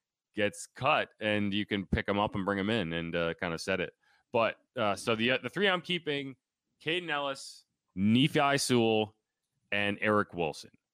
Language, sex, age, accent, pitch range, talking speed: English, male, 30-49, American, 95-120 Hz, 185 wpm